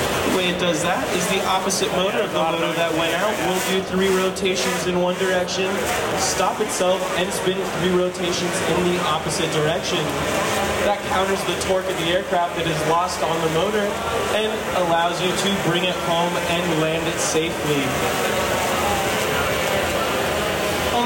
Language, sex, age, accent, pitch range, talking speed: English, male, 20-39, American, 165-190 Hz, 160 wpm